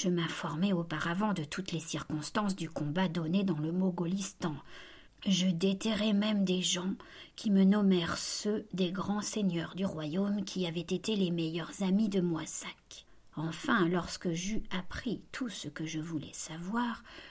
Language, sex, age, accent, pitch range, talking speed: French, female, 50-69, French, 165-200 Hz, 155 wpm